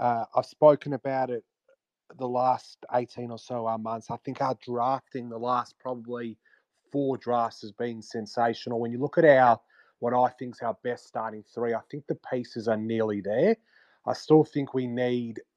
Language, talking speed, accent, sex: English, 185 wpm, Australian, male